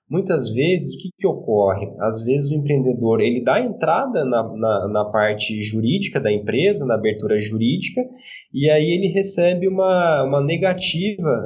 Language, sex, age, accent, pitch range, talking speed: Portuguese, male, 20-39, Brazilian, 115-160 Hz, 155 wpm